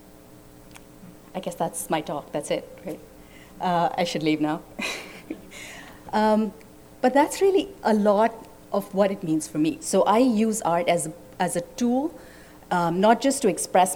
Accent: Indian